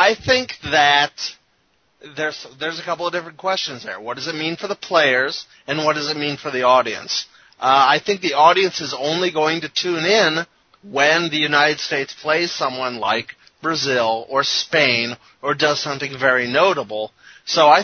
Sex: male